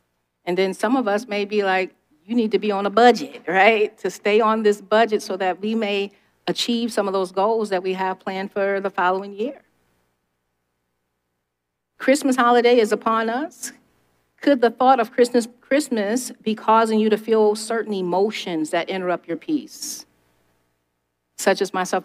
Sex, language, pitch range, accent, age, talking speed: female, English, 130-210 Hz, American, 40-59, 170 wpm